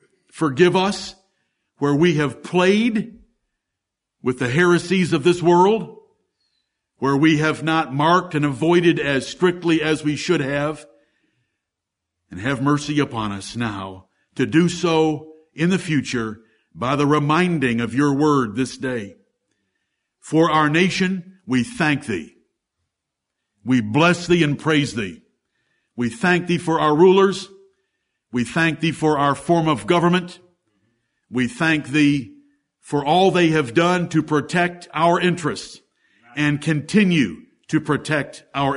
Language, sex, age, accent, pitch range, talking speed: English, male, 60-79, American, 140-175 Hz, 135 wpm